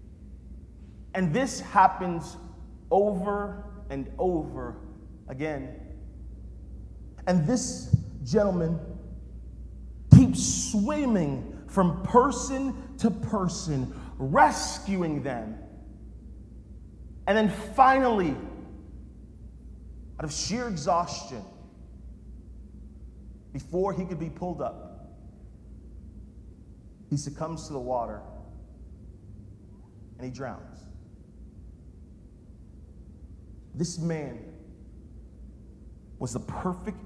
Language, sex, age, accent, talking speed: English, male, 40-59, American, 70 wpm